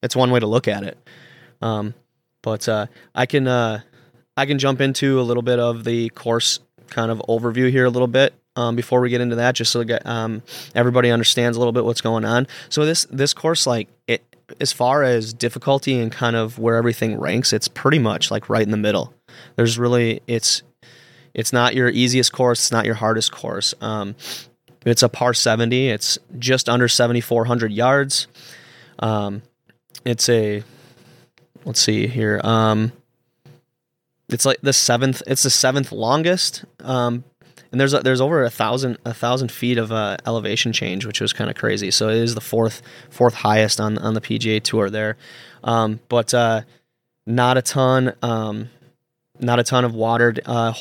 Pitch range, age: 115-125 Hz, 20-39